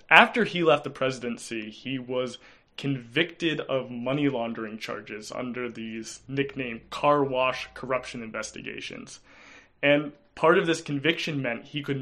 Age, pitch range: 20-39, 125-155 Hz